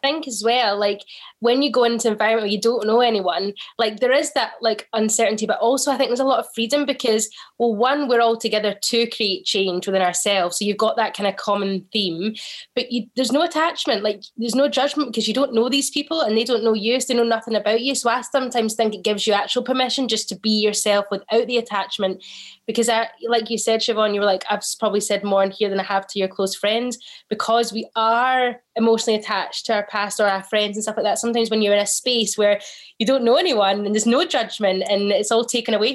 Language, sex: English, female